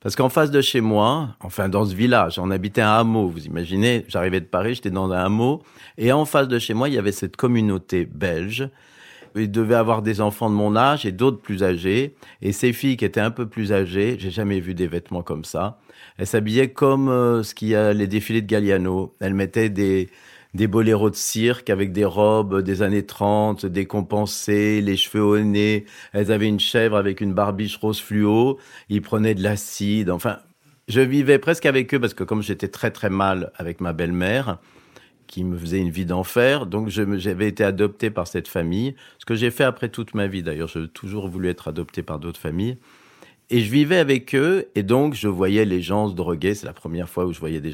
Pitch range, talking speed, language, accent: 95-115 Hz, 215 wpm, French, French